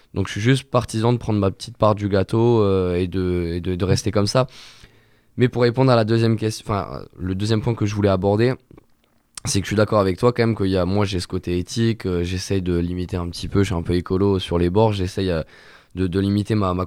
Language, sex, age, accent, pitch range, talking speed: French, male, 20-39, French, 90-110 Hz, 265 wpm